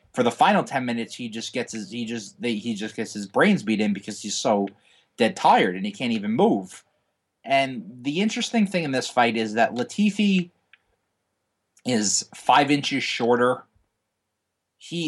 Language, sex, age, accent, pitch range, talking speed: English, male, 30-49, American, 115-160 Hz, 175 wpm